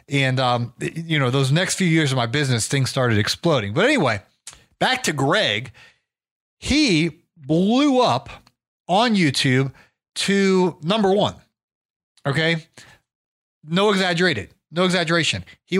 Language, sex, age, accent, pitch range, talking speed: English, male, 30-49, American, 135-185 Hz, 125 wpm